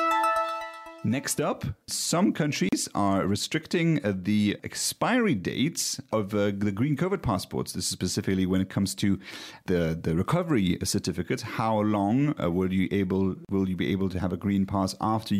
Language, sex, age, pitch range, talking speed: English, male, 30-49, 95-120 Hz, 170 wpm